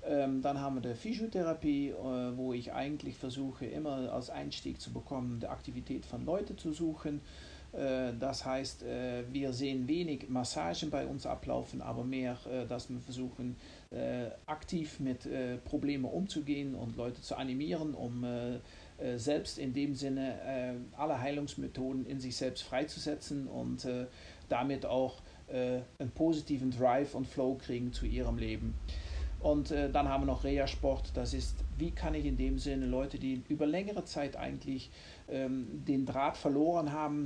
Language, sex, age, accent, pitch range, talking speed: German, male, 50-69, German, 125-145 Hz, 145 wpm